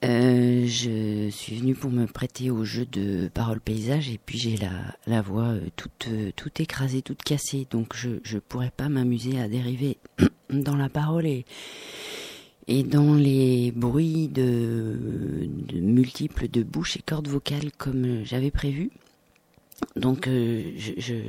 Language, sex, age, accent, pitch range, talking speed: French, female, 40-59, French, 115-145 Hz, 150 wpm